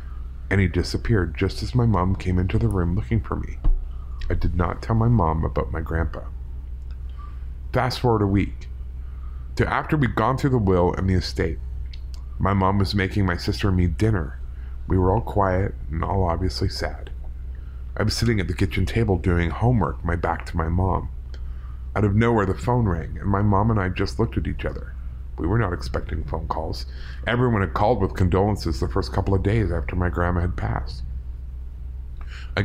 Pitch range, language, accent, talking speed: 65-100 Hz, English, American, 195 wpm